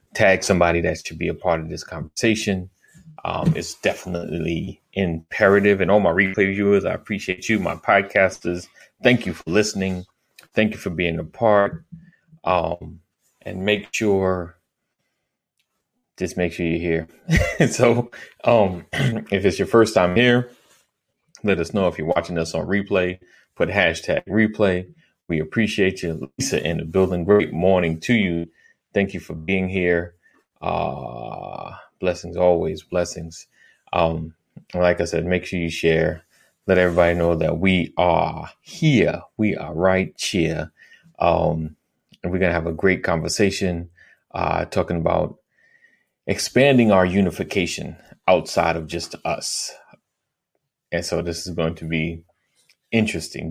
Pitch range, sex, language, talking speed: 85-100 Hz, male, English, 145 wpm